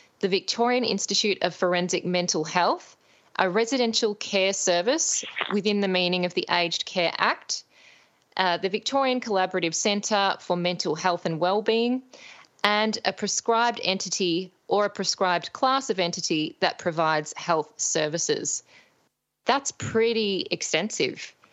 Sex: female